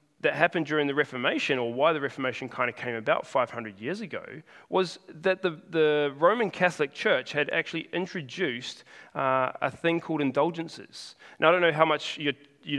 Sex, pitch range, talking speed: male, 140-180 Hz, 185 wpm